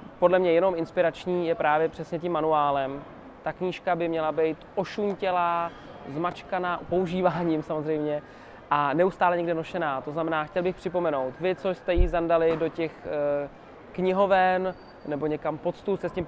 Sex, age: male, 20-39